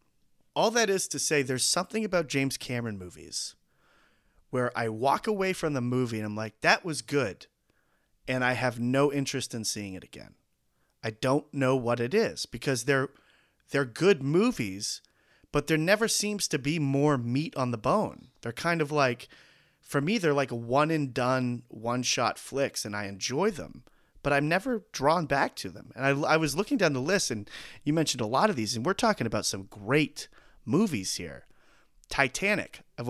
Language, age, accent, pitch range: English, 30-49, American, 115-155 Hz